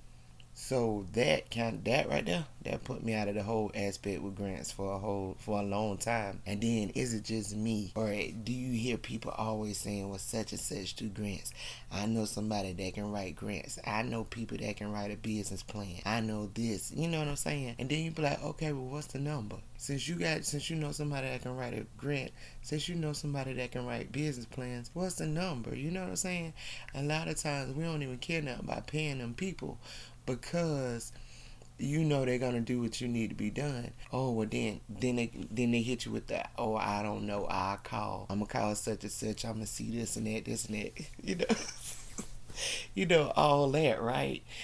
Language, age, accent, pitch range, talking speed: English, 30-49, American, 105-130 Hz, 230 wpm